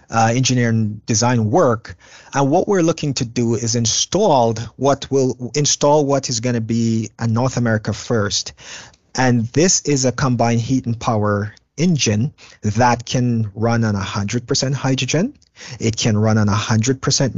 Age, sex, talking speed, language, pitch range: 30-49, male, 150 wpm, English, 110-135 Hz